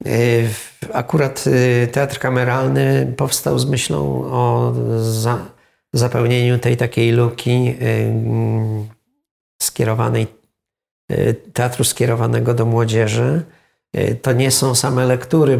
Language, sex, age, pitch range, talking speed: Polish, male, 50-69, 110-125 Hz, 85 wpm